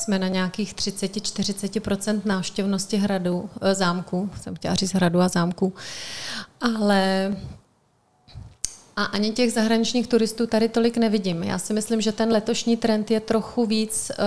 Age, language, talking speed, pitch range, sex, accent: 30-49, Czech, 130 wpm, 190-205 Hz, female, native